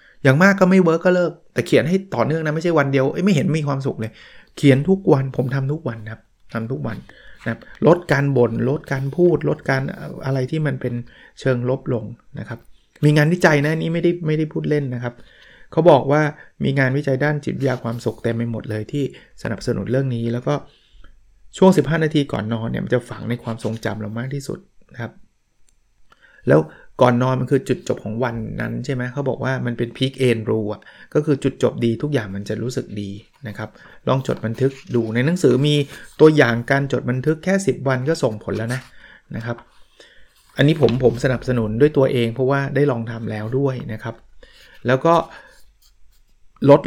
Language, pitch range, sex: Thai, 120-145 Hz, male